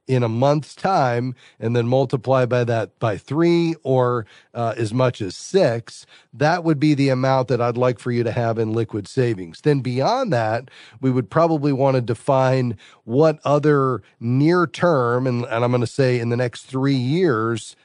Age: 40-59